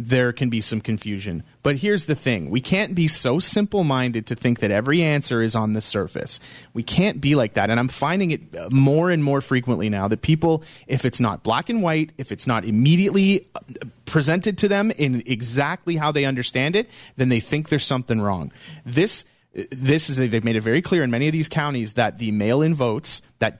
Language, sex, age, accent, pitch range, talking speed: English, male, 30-49, American, 120-170 Hz, 210 wpm